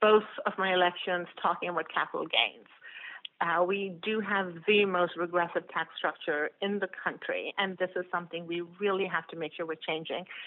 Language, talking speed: English, 185 wpm